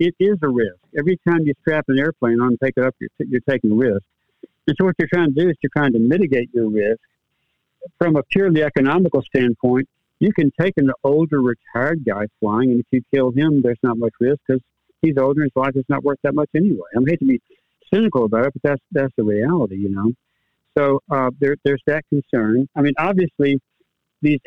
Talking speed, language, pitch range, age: 235 wpm, English, 125-155 Hz, 60-79